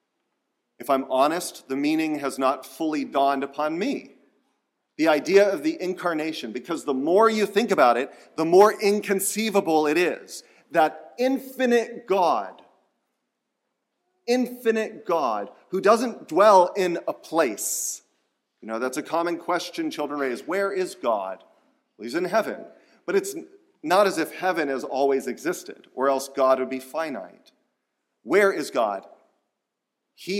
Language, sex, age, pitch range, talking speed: English, male, 40-59, 140-215 Hz, 145 wpm